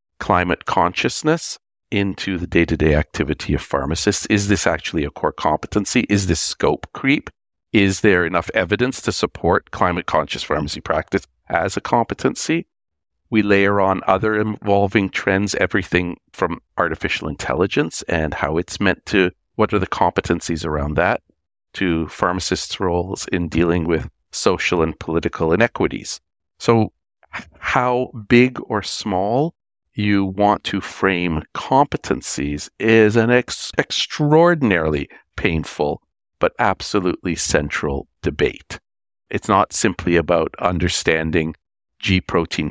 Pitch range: 80-105 Hz